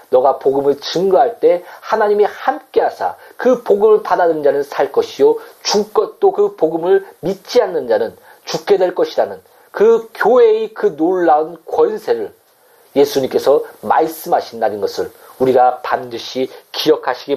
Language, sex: Korean, male